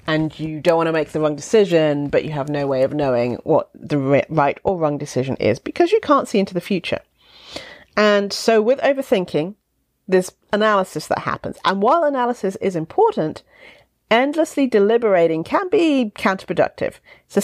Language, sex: English, female